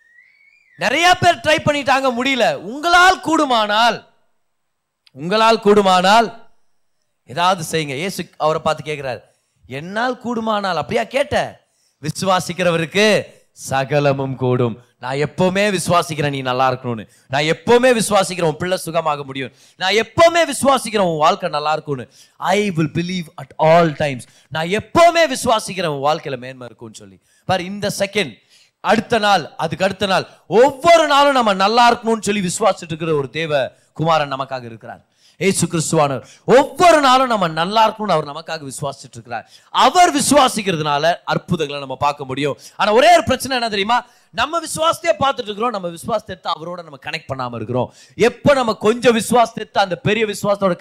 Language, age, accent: Tamil, 30-49, native